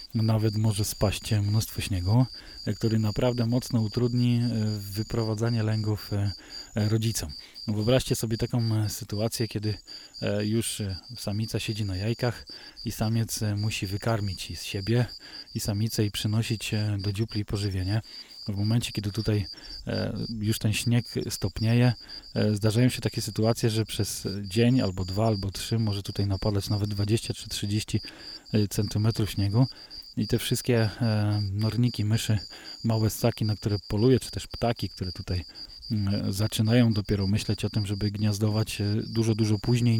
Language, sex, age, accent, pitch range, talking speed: Polish, male, 20-39, native, 105-115 Hz, 135 wpm